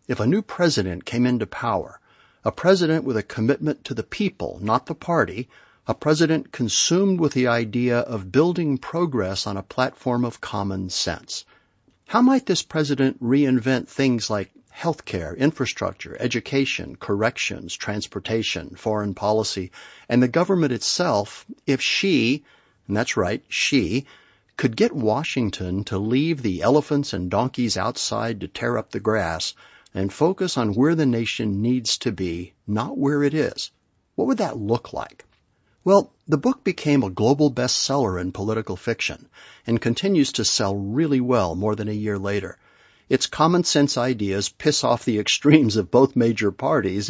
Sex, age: male, 60-79